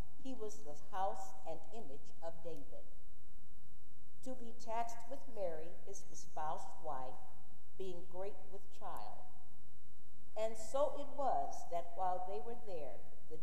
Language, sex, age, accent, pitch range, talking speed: English, female, 50-69, American, 160-225 Hz, 135 wpm